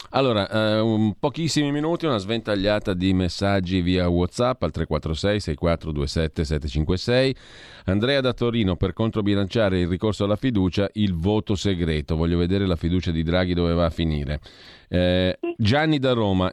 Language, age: Italian, 40-59